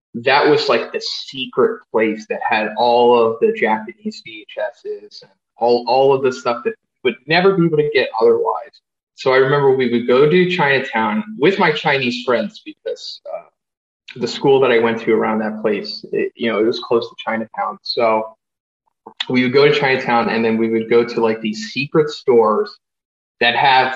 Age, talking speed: 20-39, 190 wpm